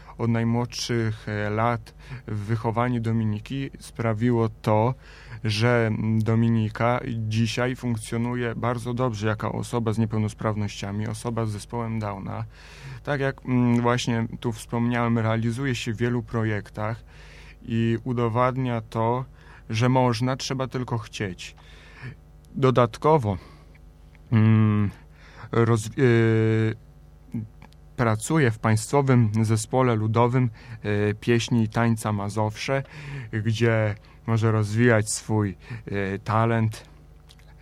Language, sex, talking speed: Polish, male, 90 wpm